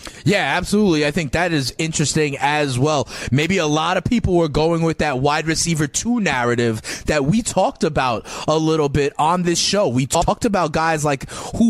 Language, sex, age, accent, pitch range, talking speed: English, male, 30-49, American, 140-170 Hz, 195 wpm